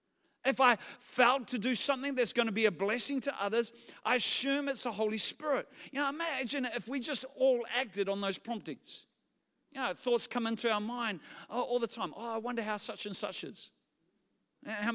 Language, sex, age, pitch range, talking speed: English, male, 40-59, 210-265 Hz, 200 wpm